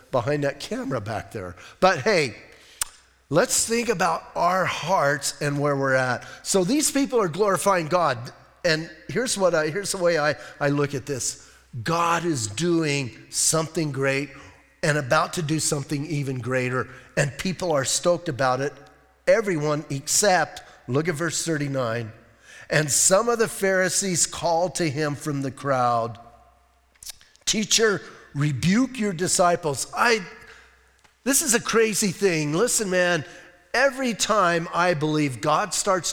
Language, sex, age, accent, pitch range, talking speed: English, male, 40-59, American, 140-190 Hz, 145 wpm